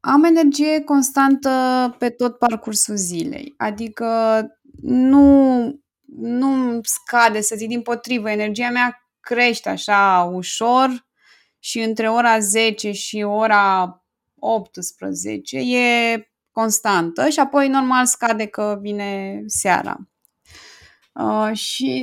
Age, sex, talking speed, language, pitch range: 20-39, female, 100 wpm, Romanian, 215-255 Hz